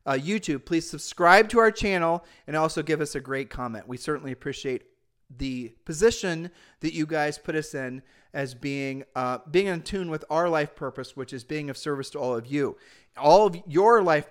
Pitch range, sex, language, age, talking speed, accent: 135-175 Hz, male, English, 40-59, 200 wpm, American